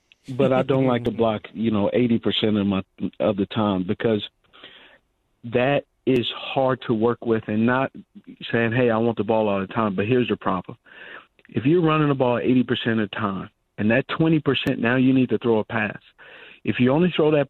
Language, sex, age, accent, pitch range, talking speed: English, male, 50-69, American, 110-135 Hz, 215 wpm